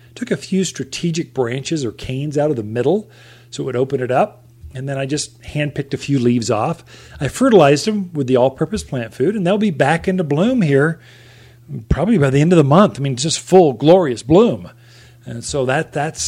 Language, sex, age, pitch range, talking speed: English, male, 40-59, 130-175 Hz, 220 wpm